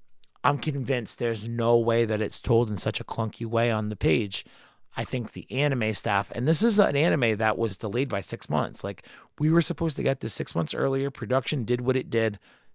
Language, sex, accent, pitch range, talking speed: English, male, American, 105-125 Hz, 220 wpm